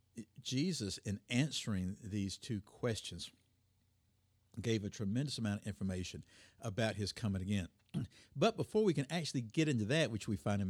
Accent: American